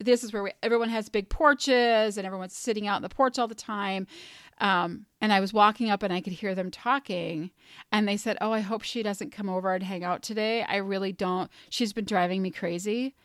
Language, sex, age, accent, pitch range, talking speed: English, female, 30-49, American, 200-245 Hz, 235 wpm